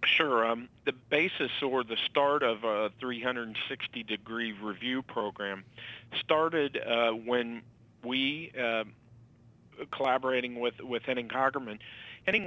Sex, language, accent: male, English, American